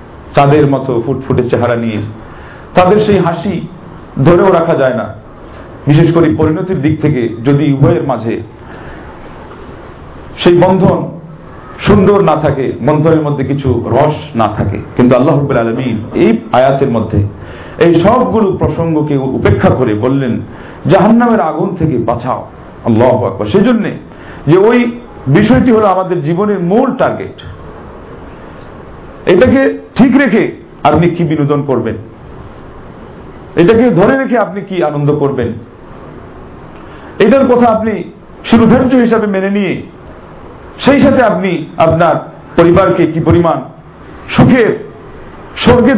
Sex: male